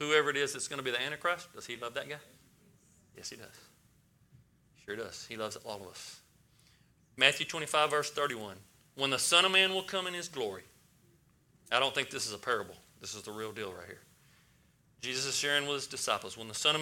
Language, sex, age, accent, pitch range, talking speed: English, male, 40-59, American, 125-165 Hz, 220 wpm